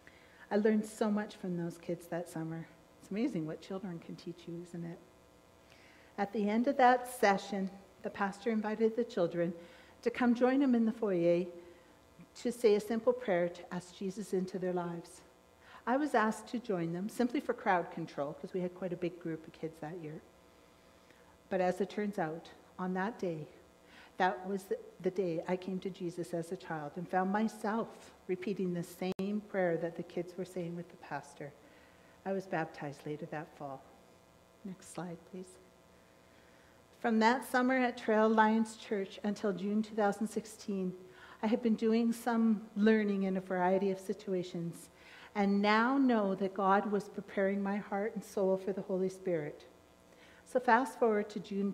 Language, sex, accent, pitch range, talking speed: English, female, American, 170-215 Hz, 175 wpm